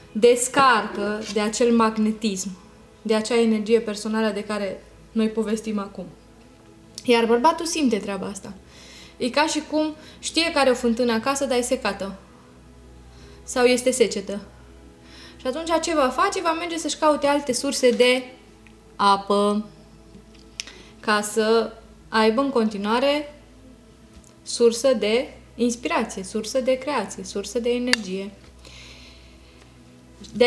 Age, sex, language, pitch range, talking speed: 20-39, female, Romanian, 205-260 Hz, 120 wpm